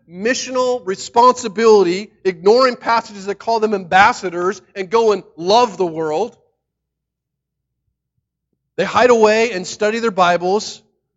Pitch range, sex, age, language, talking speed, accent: 145-205 Hz, male, 40-59, English, 115 wpm, American